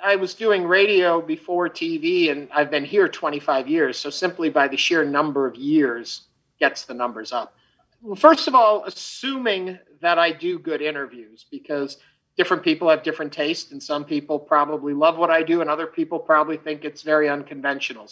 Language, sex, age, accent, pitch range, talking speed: English, male, 50-69, American, 145-195 Hz, 185 wpm